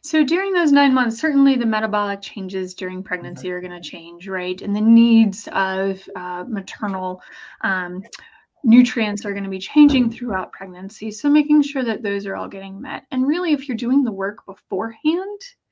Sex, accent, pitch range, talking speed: female, American, 195-245 Hz, 185 wpm